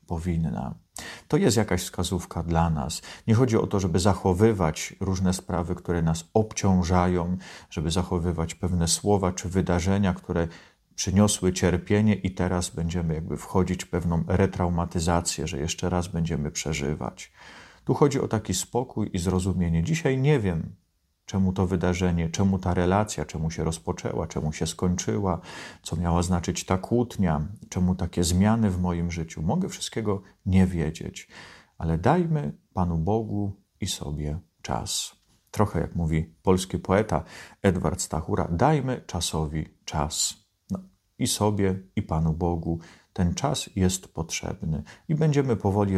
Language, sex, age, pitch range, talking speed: Polish, male, 40-59, 80-95 Hz, 140 wpm